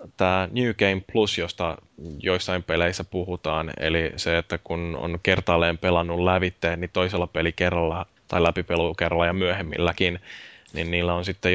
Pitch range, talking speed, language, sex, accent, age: 85-95 Hz, 140 wpm, Finnish, male, native, 10-29